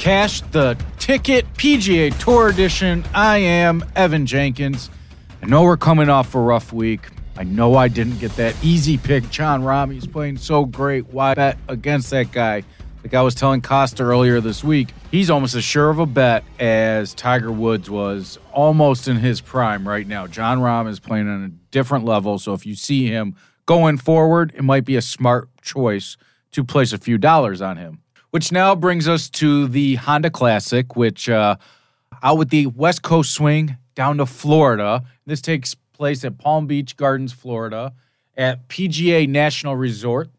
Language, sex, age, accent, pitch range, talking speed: English, male, 40-59, American, 120-150 Hz, 180 wpm